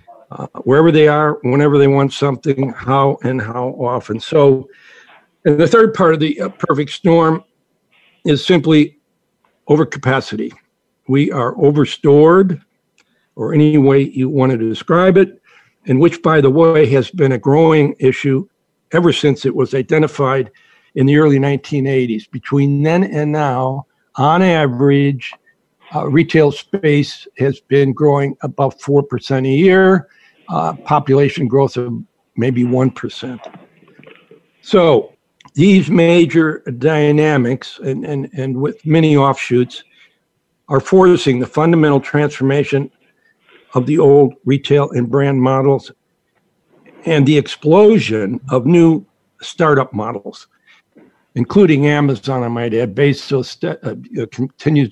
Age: 60-79